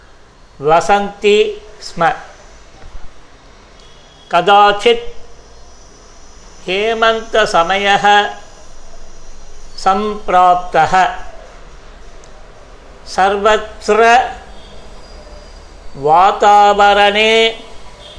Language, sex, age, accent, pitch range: Tamil, male, 50-69, native, 200-225 Hz